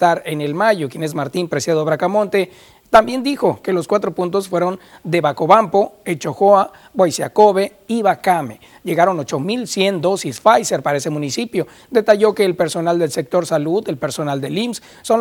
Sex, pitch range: male, 160-205 Hz